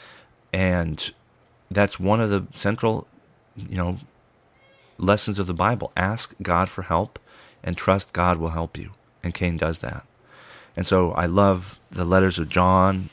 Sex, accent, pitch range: male, American, 85-95 Hz